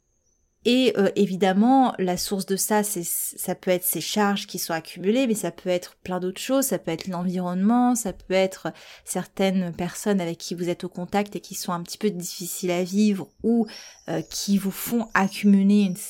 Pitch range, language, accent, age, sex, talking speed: 180-220 Hz, French, French, 30-49, female, 195 wpm